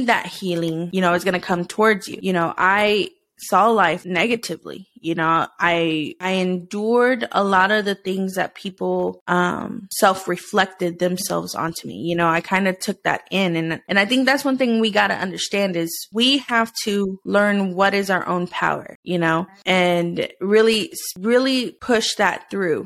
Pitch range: 180-230 Hz